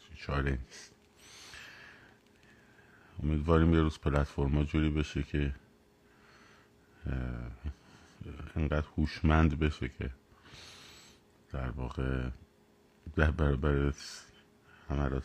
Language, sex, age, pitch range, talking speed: Persian, male, 50-69, 70-85 Hz, 65 wpm